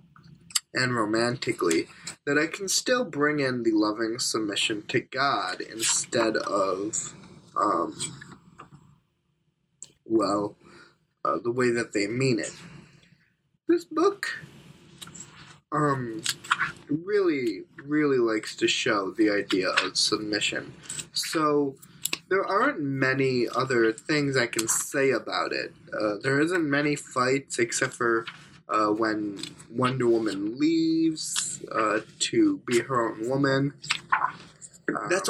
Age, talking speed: 10-29, 110 wpm